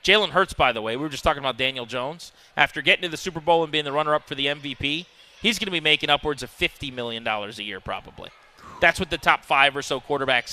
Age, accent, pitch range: 30-49, American, 140-185 Hz